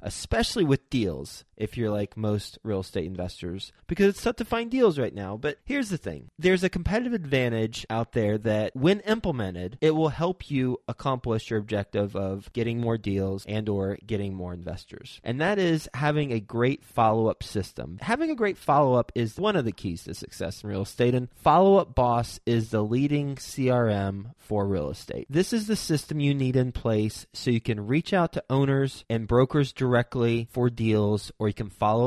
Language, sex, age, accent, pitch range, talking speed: English, male, 30-49, American, 110-150 Hz, 195 wpm